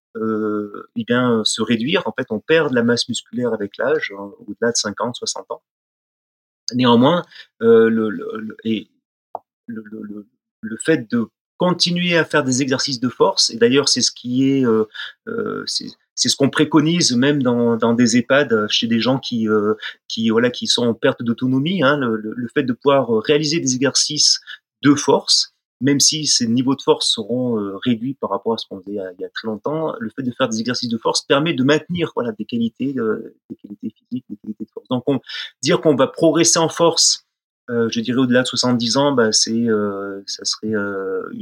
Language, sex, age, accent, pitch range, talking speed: French, male, 30-49, French, 115-165 Hz, 205 wpm